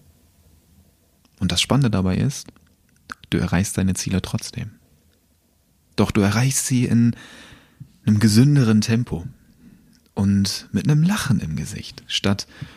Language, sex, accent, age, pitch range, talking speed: German, male, German, 30-49, 90-130 Hz, 115 wpm